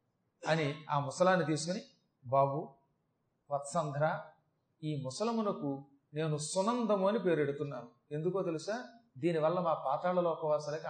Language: Telugu